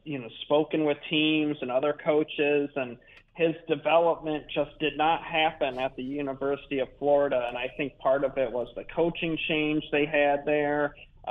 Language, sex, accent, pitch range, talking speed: English, male, American, 135-155 Hz, 175 wpm